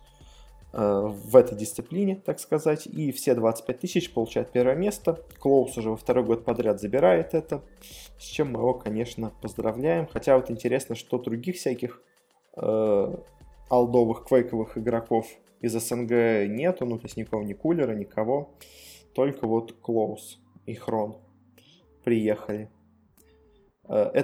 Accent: native